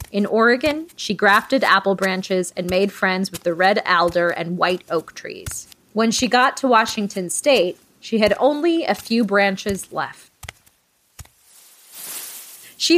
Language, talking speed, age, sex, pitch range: English, 145 wpm, 20-39, female, 185-250 Hz